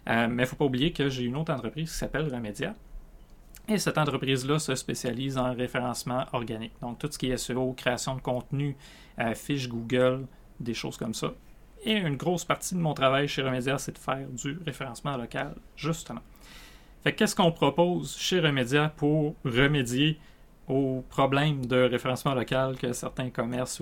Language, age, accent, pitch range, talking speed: French, 30-49, Canadian, 125-150 Hz, 175 wpm